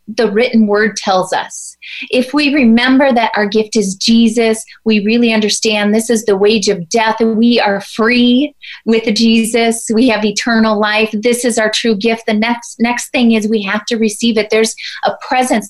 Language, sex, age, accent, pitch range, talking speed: English, female, 30-49, American, 220-265 Hz, 190 wpm